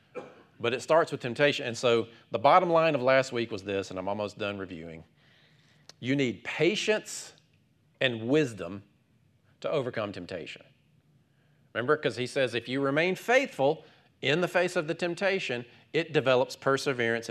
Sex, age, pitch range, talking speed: male, 40-59, 120-170 Hz, 155 wpm